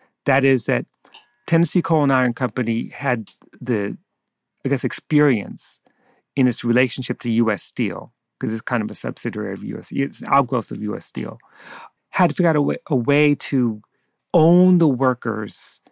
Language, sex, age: English, male, 40-59